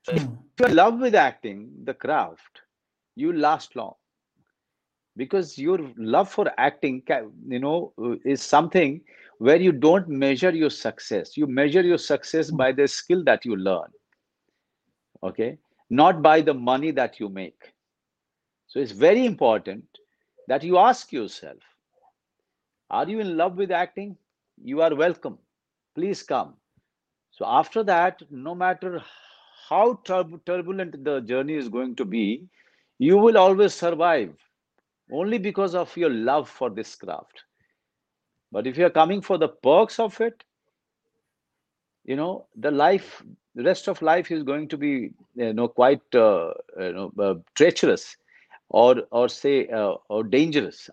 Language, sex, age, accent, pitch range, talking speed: Hindi, male, 50-69, native, 140-205 Hz, 145 wpm